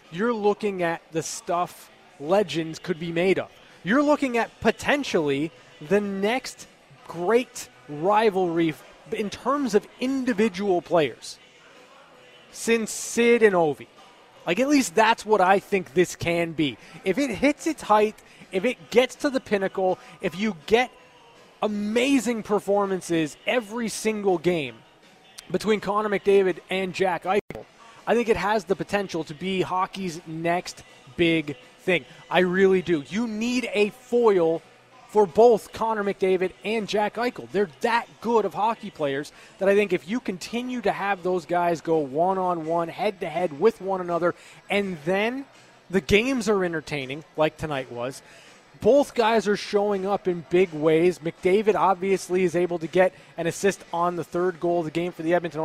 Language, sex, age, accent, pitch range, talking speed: English, male, 20-39, American, 170-220 Hz, 155 wpm